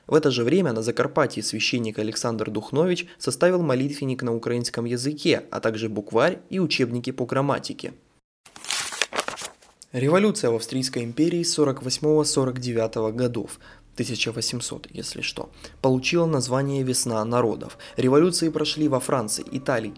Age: 20-39